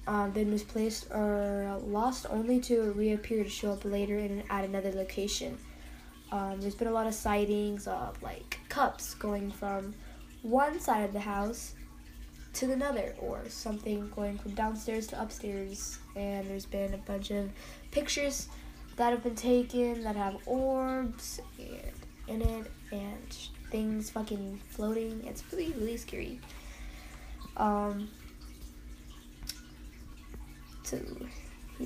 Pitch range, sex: 200-235 Hz, female